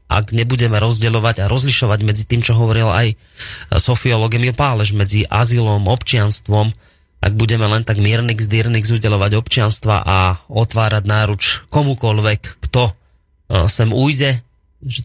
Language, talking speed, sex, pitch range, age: Slovak, 130 wpm, male, 100-120 Hz, 30-49